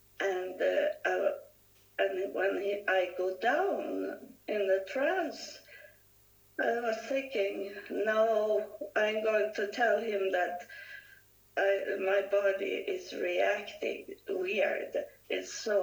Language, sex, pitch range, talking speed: English, female, 195-310 Hz, 115 wpm